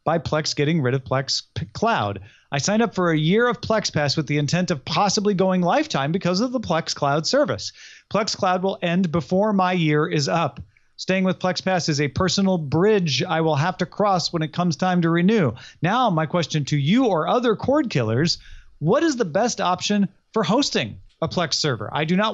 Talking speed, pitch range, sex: 210 wpm, 150-205 Hz, male